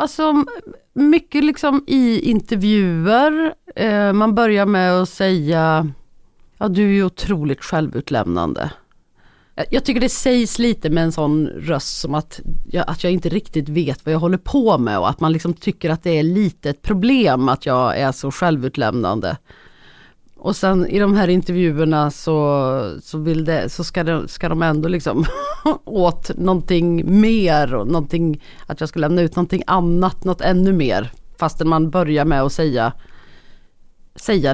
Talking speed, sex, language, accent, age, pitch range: 160 wpm, female, Swedish, native, 30-49, 155-210 Hz